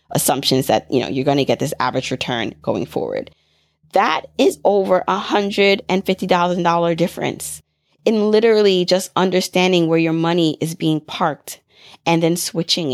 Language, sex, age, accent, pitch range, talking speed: English, female, 20-39, American, 155-185 Hz, 165 wpm